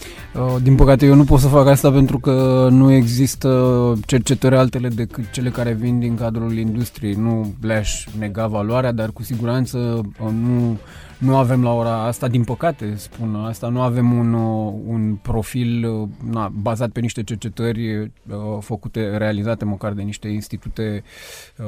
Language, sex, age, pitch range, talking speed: Romanian, male, 20-39, 110-125 Hz, 145 wpm